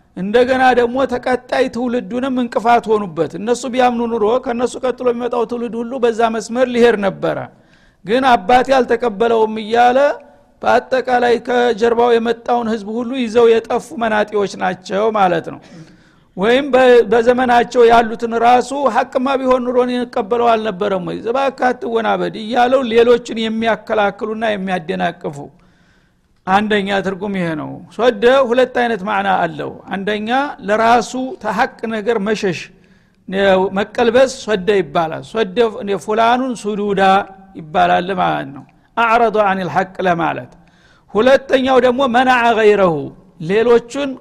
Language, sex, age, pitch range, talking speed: Amharic, male, 50-69, 205-245 Hz, 105 wpm